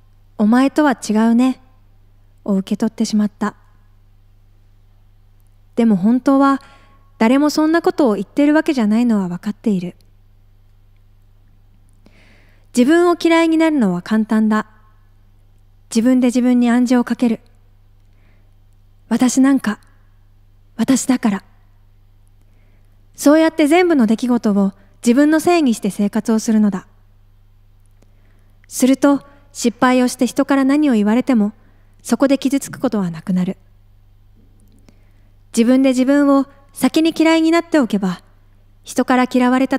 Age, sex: 20-39, female